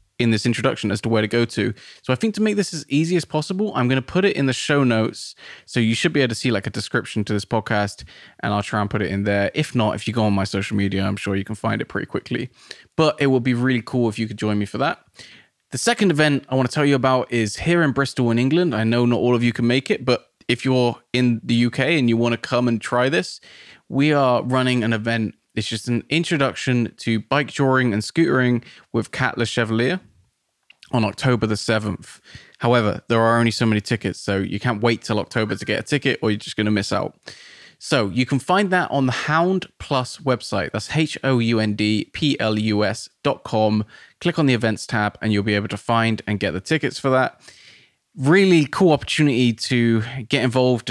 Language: English